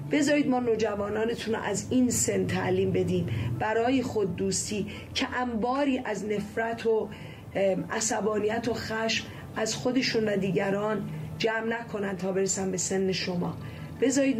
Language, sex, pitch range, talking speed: Persian, female, 200-235 Hz, 135 wpm